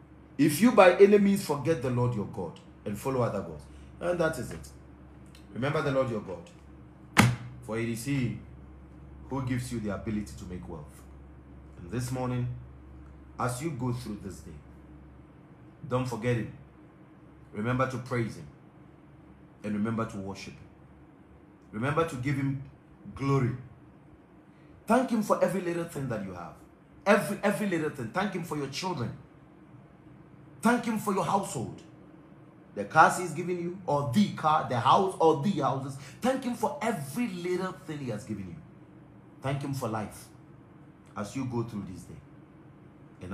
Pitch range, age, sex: 100-155 Hz, 40-59, male